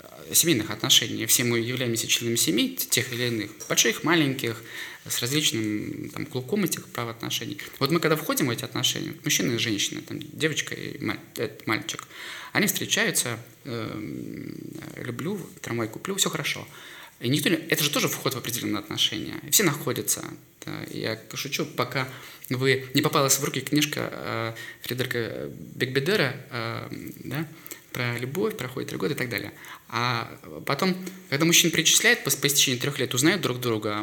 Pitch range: 125-160 Hz